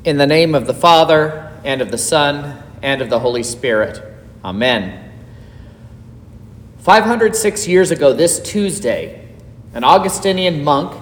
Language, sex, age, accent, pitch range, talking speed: English, male, 40-59, American, 120-190 Hz, 130 wpm